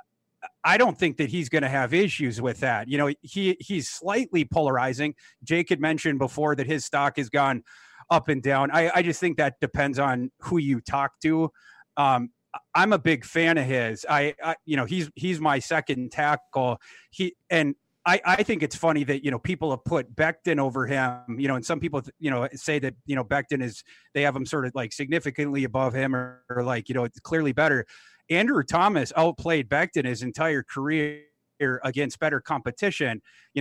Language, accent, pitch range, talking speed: English, American, 135-160 Hz, 200 wpm